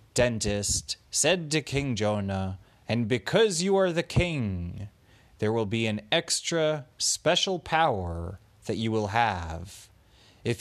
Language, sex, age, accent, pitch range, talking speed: English, male, 30-49, American, 100-155 Hz, 130 wpm